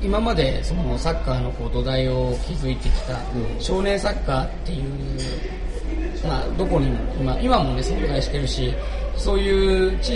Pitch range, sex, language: 130-190 Hz, male, Japanese